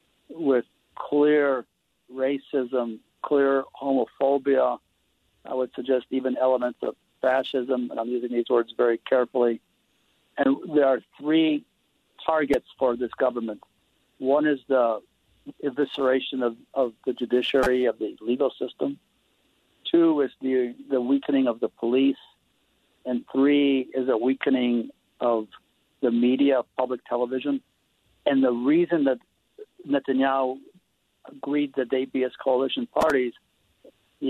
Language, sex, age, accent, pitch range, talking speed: English, male, 60-79, American, 125-140 Hz, 120 wpm